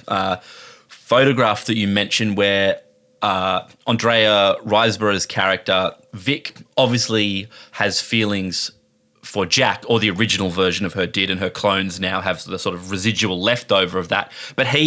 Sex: male